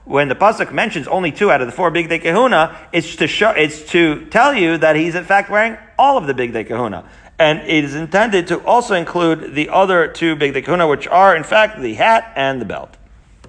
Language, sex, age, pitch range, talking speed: English, male, 40-59, 135-170 Hz, 235 wpm